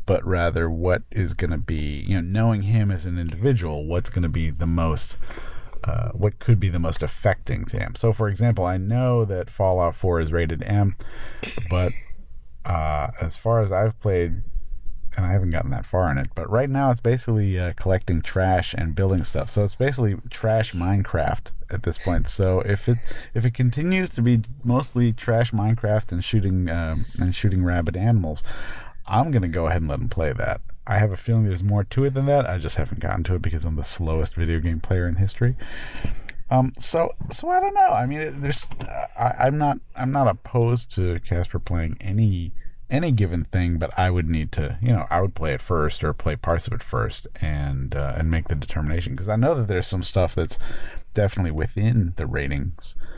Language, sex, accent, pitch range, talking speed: English, male, American, 85-115 Hz, 210 wpm